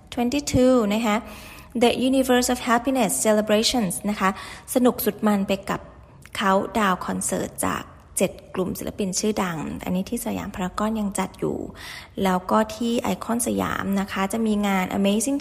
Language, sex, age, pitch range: Thai, female, 20-39, 200-245 Hz